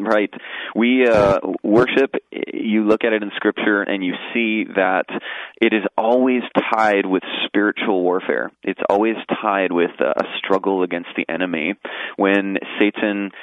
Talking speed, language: 145 wpm, English